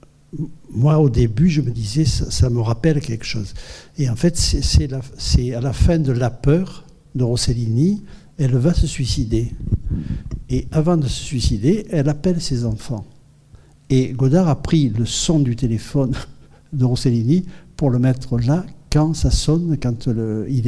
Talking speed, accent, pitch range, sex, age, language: 185 wpm, French, 115-145 Hz, male, 60-79, French